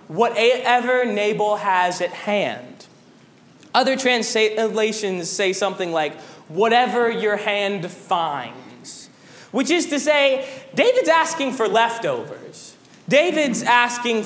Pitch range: 195-280 Hz